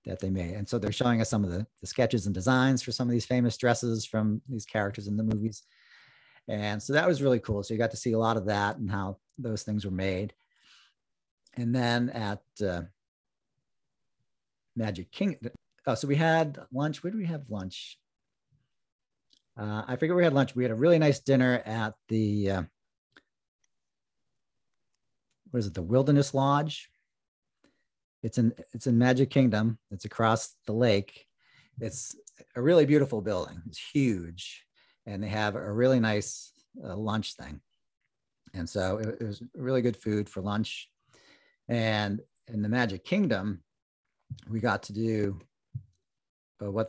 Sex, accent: male, American